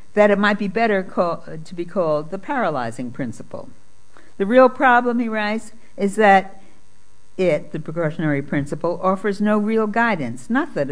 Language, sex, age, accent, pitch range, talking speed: English, female, 60-79, American, 140-205 Hz, 155 wpm